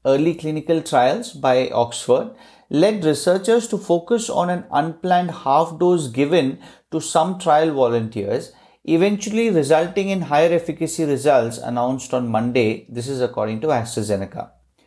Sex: male